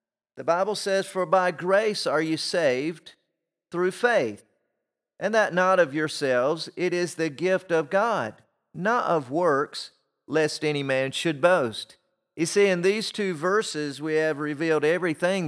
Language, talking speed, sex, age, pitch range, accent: English, 155 wpm, male, 40-59, 145-190 Hz, American